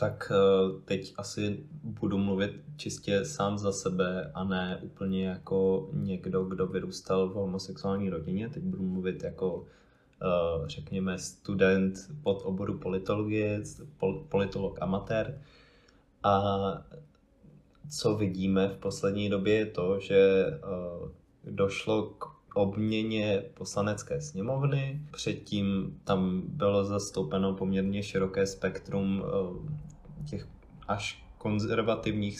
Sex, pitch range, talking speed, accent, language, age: male, 95-110 Hz, 100 wpm, native, Czech, 20-39